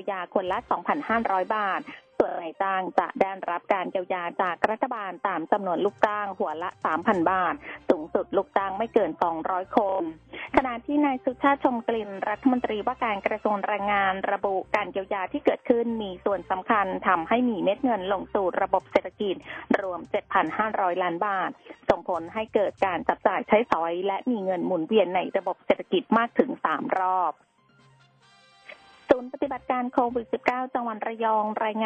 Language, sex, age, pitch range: Thai, female, 20-39, 190-235 Hz